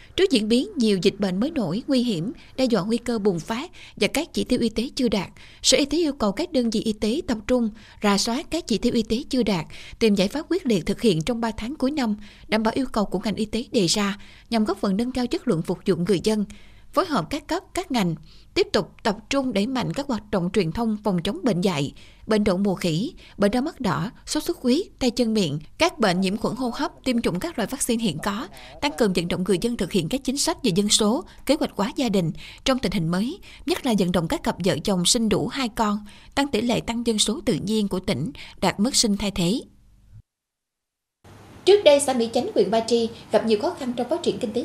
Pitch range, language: 195-250 Hz, Vietnamese